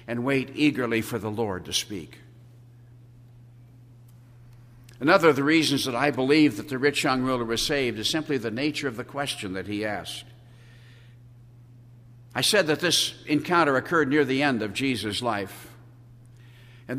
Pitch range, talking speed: 120-170 Hz, 160 wpm